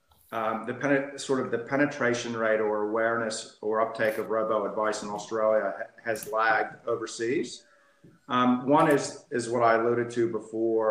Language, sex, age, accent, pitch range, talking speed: English, male, 50-69, American, 110-125 Hz, 160 wpm